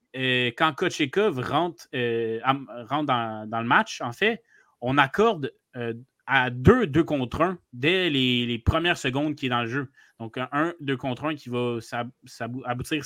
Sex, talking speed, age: male, 180 wpm, 30-49